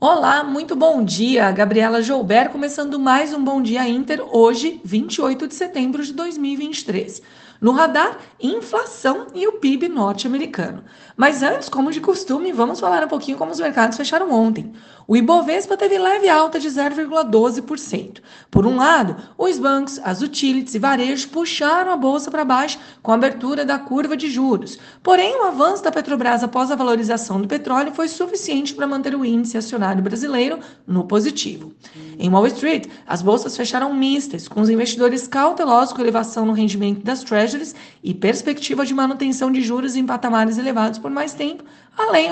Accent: Brazilian